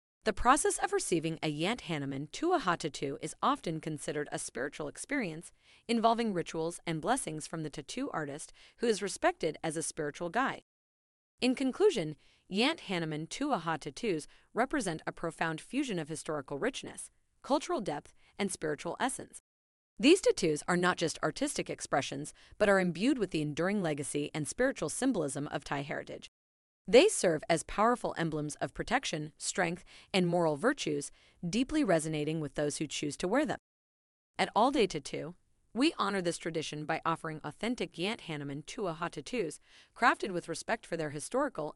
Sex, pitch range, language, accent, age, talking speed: female, 155-230 Hz, English, American, 30-49, 155 wpm